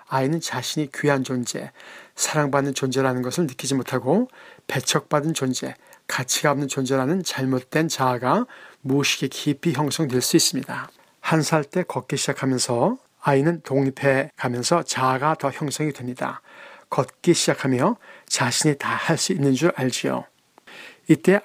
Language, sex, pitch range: Korean, male, 130-160 Hz